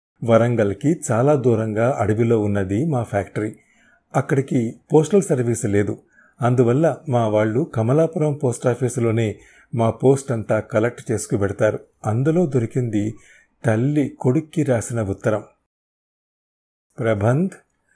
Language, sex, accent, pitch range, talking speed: Telugu, male, native, 110-140 Hz, 95 wpm